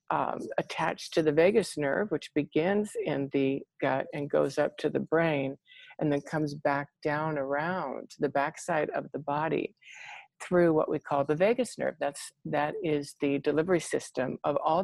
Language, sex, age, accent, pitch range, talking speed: English, female, 50-69, American, 145-170 Hz, 175 wpm